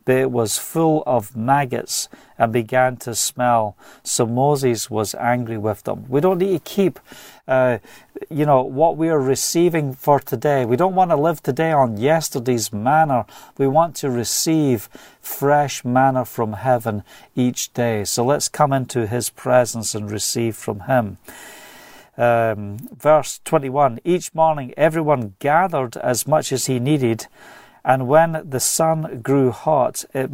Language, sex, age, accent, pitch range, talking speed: English, male, 50-69, British, 120-145 Hz, 155 wpm